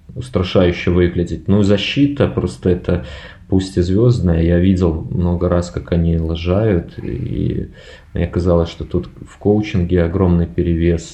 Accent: native